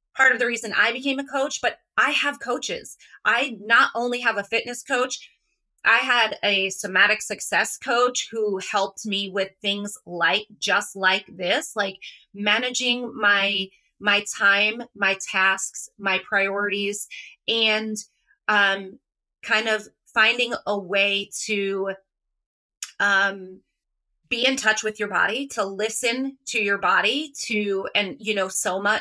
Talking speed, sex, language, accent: 140 wpm, female, English, American